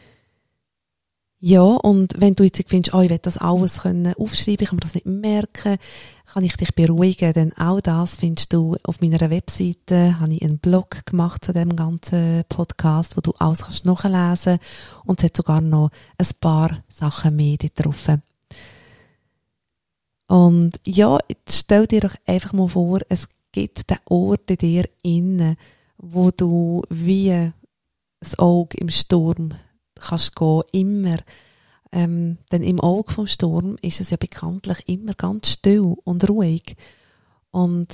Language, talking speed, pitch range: German, 160 wpm, 165-185 Hz